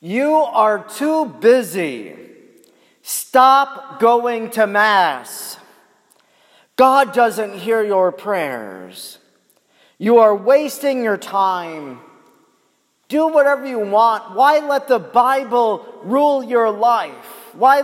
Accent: American